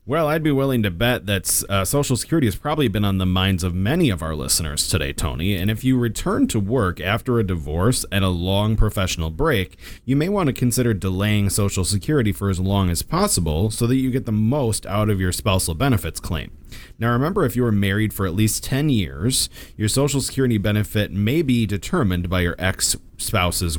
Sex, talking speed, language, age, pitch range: male, 210 wpm, English, 30-49, 90-115 Hz